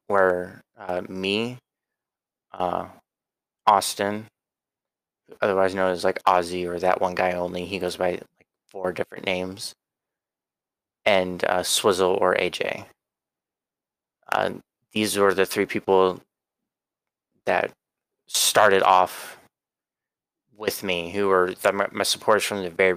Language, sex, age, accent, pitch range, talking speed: English, male, 20-39, American, 90-95 Hz, 125 wpm